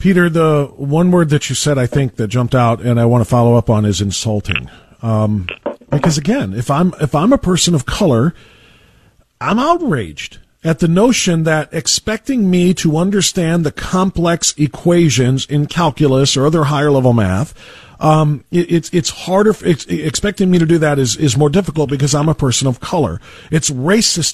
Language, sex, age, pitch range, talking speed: English, male, 40-59, 150-220 Hz, 185 wpm